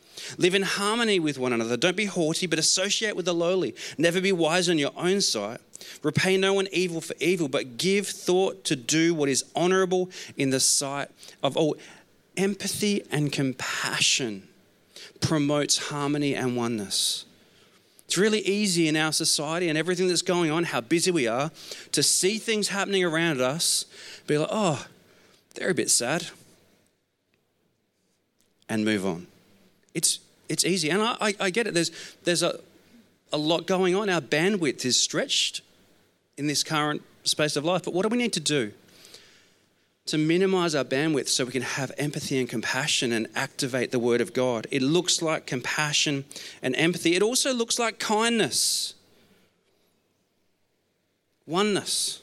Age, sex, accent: 30-49, male, Australian